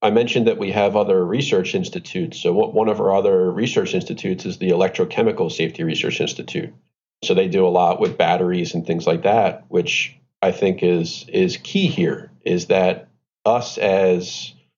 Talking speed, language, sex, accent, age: 175 wpm, English, male, American, 40-59